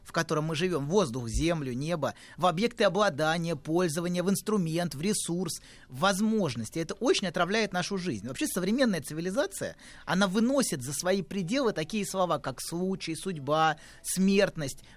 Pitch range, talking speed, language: 145-200 Hz, 145 wpm, Russian